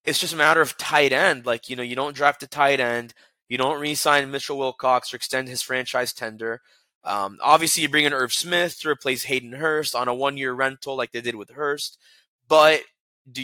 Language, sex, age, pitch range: English, male, 20-39, 130-150 Hz